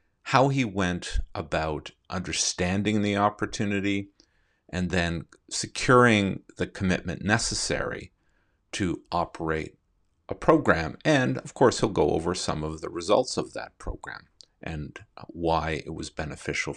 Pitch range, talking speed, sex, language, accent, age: 80-100 Hz, 125 wpm, male, English, American, 50-69